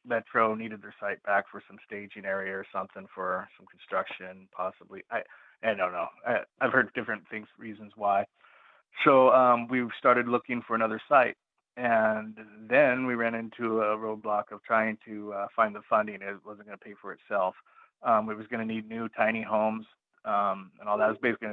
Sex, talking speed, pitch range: male, 195 wpm, 105-115 Hz